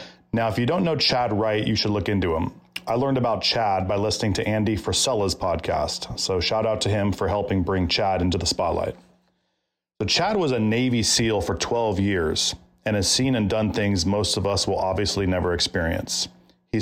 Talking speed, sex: 205 wpm, male